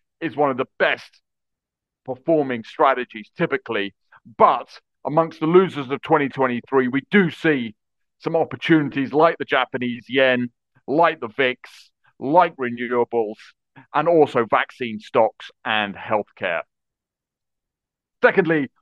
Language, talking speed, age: English, 110 wpm, 40-59